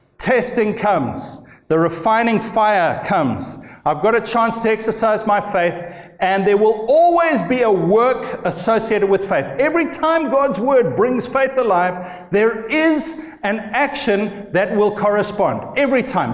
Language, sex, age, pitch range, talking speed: English, male, 50-69, 175-230 Hz, 145 wpm